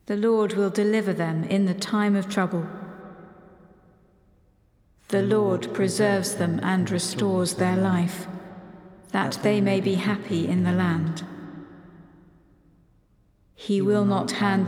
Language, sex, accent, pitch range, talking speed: English, female, British, 180-200 Hz, 125 wpm